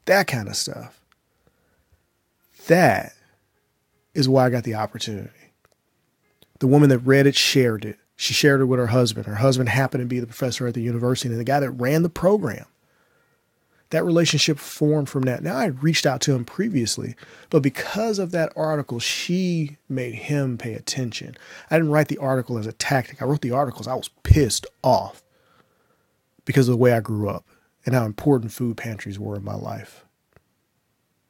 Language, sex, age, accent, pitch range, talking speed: English, male, 40-59, American, 115-140 Hz, 185 wpm